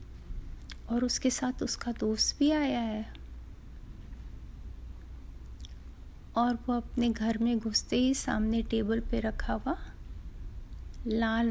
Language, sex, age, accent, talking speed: Hindi, female, 30-49, native, 110 wpm